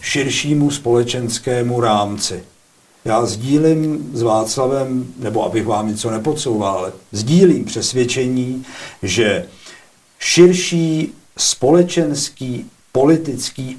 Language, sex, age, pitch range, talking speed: Czech, male, 50-69, 115-140 Hz, 80 wpm